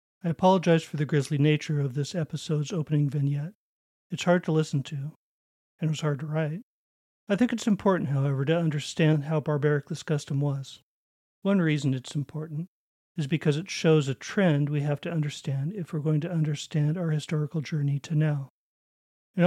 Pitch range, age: 145-165 Hz, 40-59